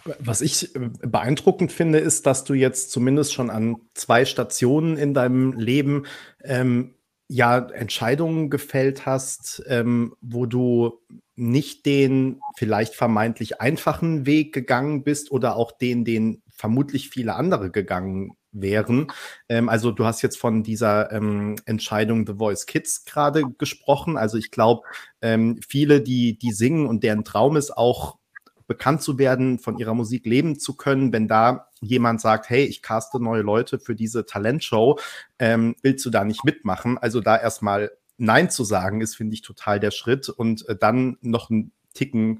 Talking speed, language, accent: 160 wpm, German, German